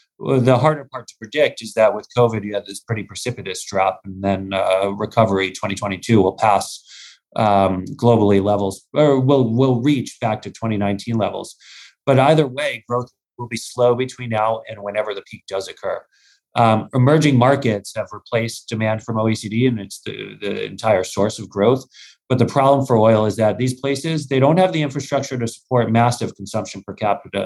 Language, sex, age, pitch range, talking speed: English, male, 40-59, 100-125 Hz, 185 wpm